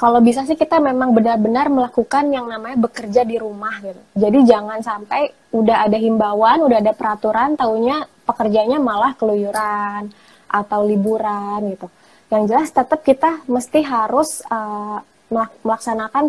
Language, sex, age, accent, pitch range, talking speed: Indonesian, female, 20-39, native, 215-250 Hz, 135 wpm